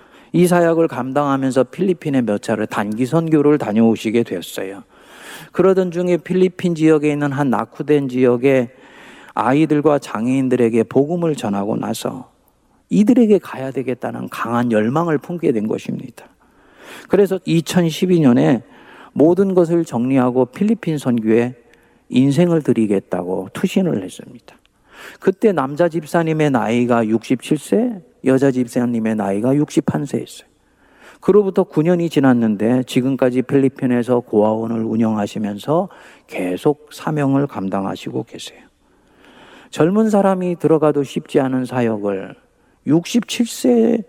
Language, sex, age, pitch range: Korean, male, 40-59, 120-175 Hz